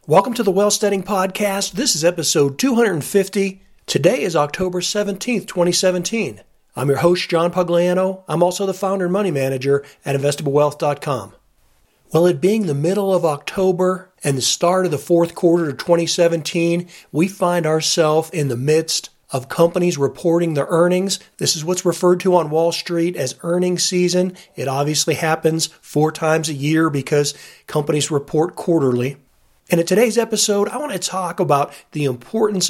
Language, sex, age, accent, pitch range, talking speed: English, male, 40-59, American, 145-180 Hz, 160 wpm